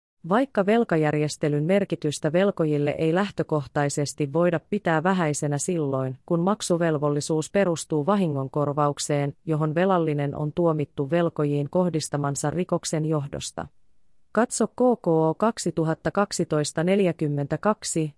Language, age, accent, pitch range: Finnish, 30-49, native, 150-185 Hz